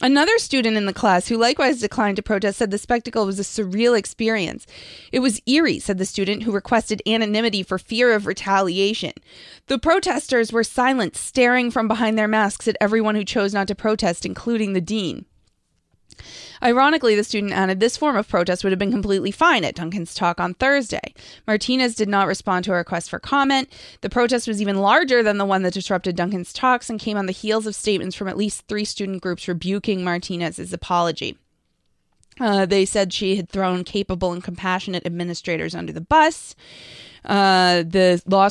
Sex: female